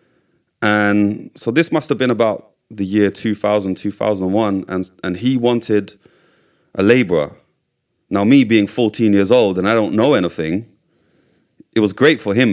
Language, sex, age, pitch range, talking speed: English, male, 30-49, 90-120 Hz, 160 wpm